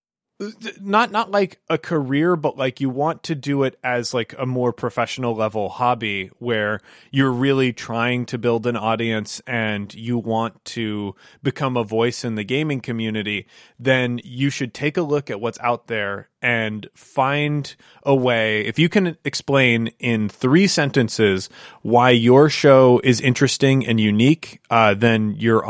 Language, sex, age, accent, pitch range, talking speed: English, male, 20-39, American, 115-140 Hz, 160 wpm